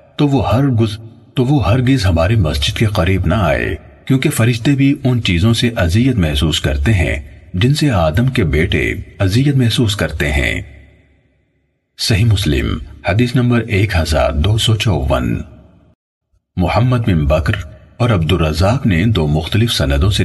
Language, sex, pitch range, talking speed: Urdu, male, 80-115 Hz, 65 wpm